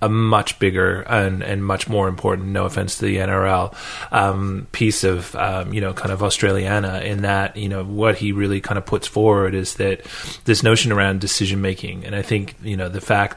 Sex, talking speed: male, 210 wpm